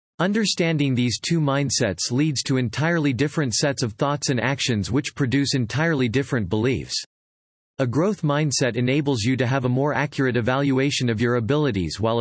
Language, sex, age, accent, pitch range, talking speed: English, male, 40-59, American, 115-150 Hz, 160 wpm